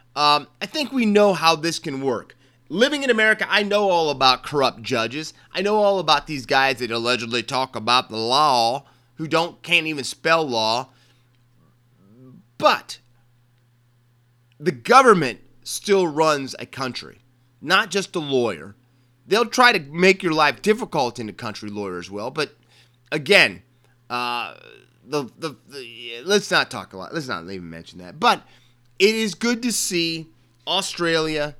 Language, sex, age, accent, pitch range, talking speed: English, male, 30-49, American, 120-165 Hz, 160 wpm